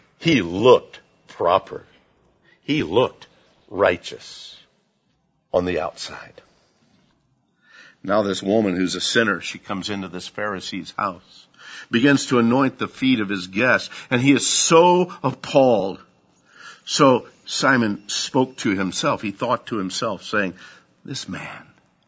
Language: English